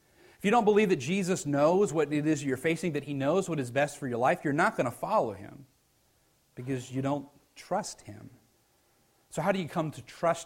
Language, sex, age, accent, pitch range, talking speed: English, male, 40-59, American, 120-165 Hz, 225 wpm